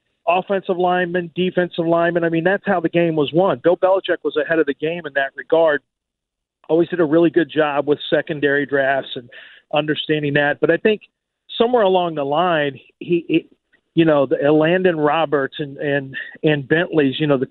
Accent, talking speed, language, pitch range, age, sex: American, 190 wpm, English, 150-185 Hz, 40-59, male